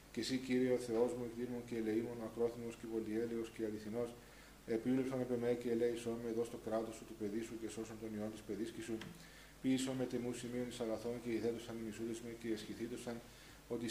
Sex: male